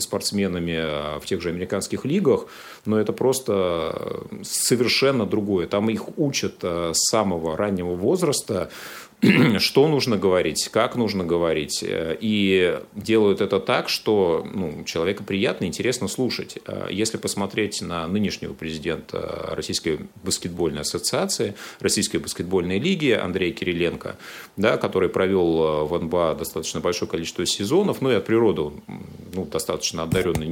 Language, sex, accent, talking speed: Russian, male, native, 125 wpm